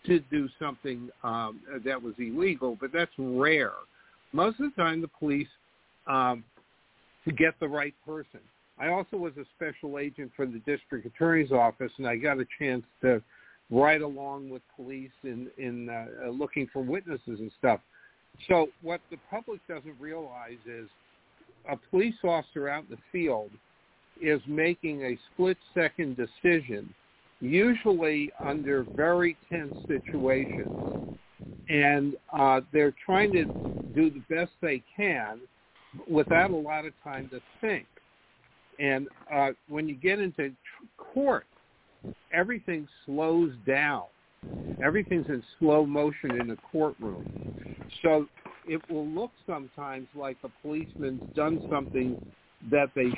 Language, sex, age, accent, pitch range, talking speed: English, male, 50-69, American, 130-160 Hz, 135 wpm